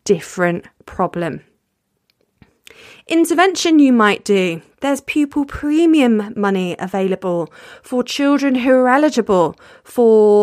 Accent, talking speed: British, 100 wpm